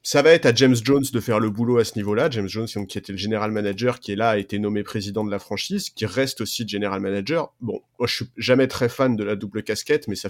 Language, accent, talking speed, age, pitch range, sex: French, French, 280 wpm, 30-49, 105-130 Hz, male